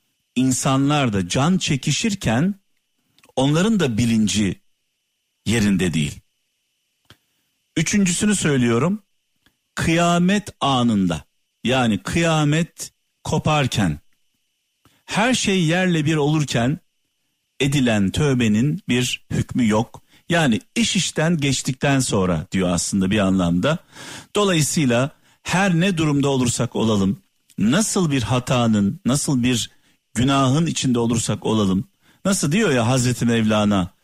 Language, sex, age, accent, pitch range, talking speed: Turkish, male, 50-69, native, 115-160 Hz, 95 wpm